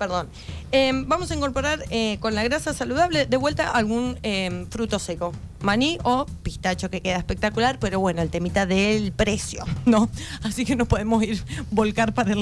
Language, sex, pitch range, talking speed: Spanish, female, 190-255 Hz, 180 wpm